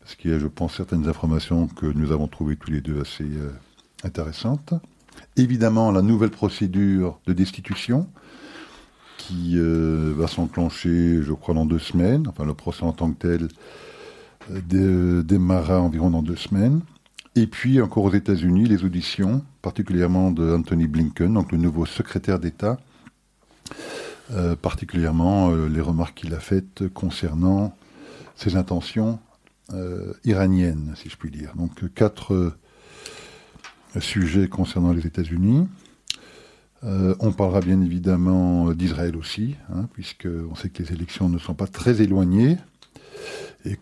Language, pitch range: French, 85-100 Hz